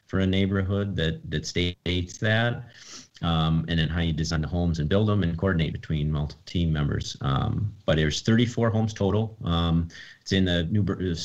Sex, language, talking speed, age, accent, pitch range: male, English, 190 wpm, 40-59, American, 80-100 Hz